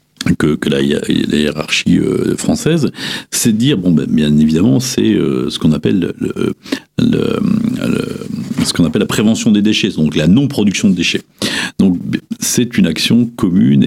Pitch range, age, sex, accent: 75-110 Hz, 50-69, male, French